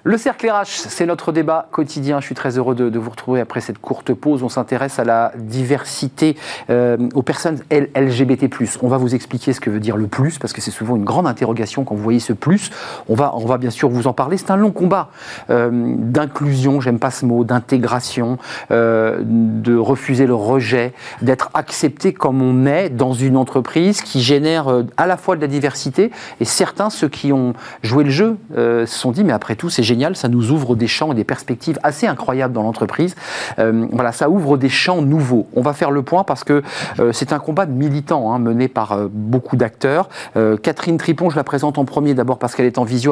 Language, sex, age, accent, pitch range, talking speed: French, male, 40-59, French, 120-155 Hz, 225 wpm